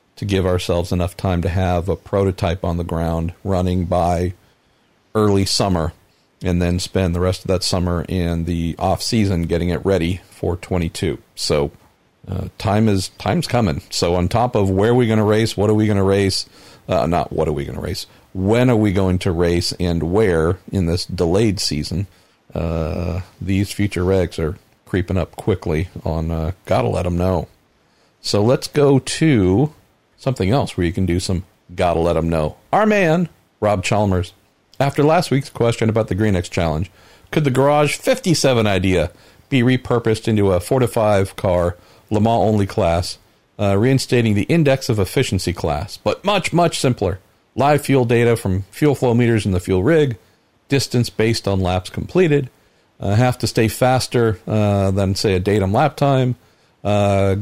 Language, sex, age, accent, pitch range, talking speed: English, male, 50-69, American, 90-120 Hz, 180 wpm